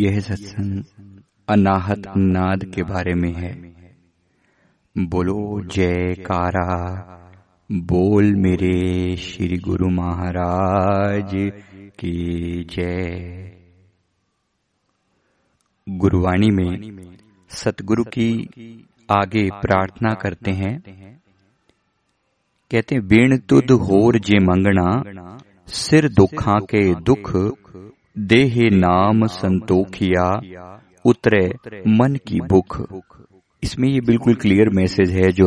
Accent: native